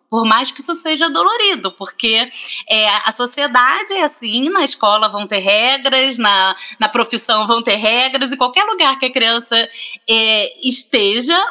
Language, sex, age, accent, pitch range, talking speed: Portuguese, female, 20-39, Brazilian, 225-320 Hz, 150 wpm